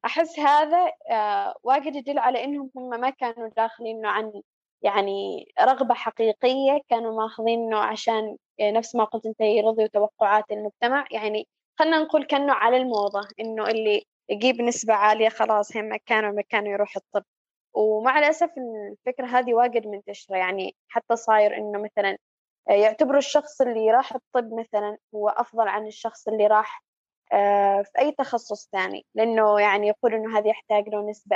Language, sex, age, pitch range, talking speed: Arabic, female, 20-39, 210-255 Hz, 145 wpm